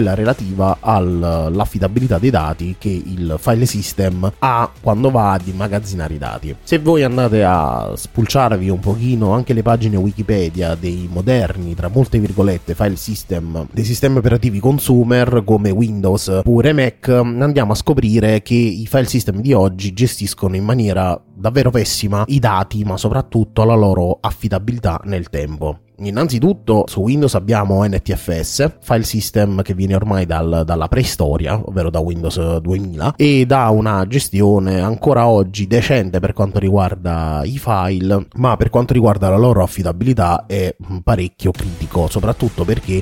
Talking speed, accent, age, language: 145 wpm, native, 30-49, Italian